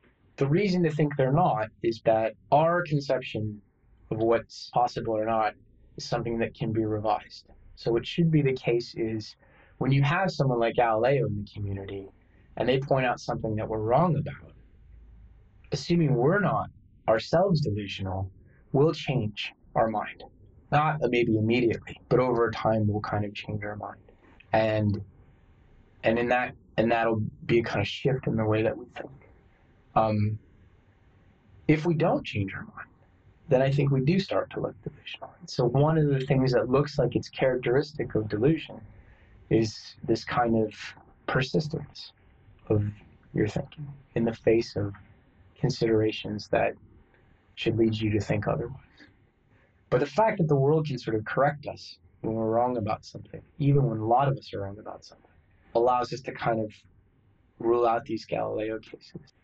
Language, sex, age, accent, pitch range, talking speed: English, male, 20-39, American, 105-140 Hz, 170 wpm